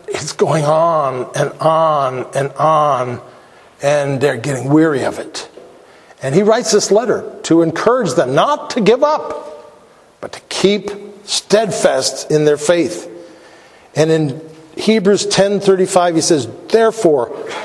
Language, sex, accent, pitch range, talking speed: English, male, American, 160-205 Hz, 135 wpm